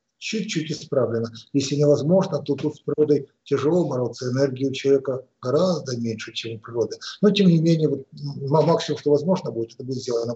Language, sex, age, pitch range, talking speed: Russian, male, 50-69, 135-180 Hz, 175 wpm